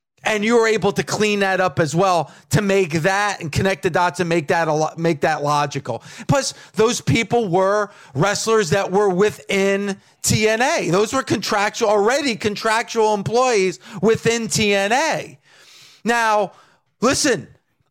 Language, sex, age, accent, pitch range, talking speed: English, male, 40-59, American, 195-245 Hz, 145 wpm